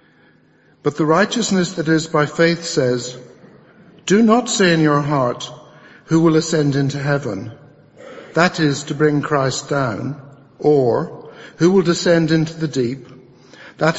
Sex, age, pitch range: male, 60-79, 140-165 Hz